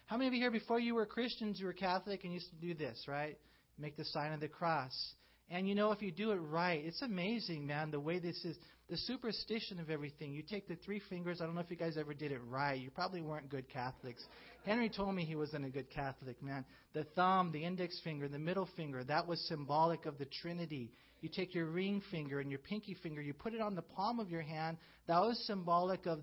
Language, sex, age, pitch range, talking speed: English, male, 40-59, 150-195 Hz, 245 wpm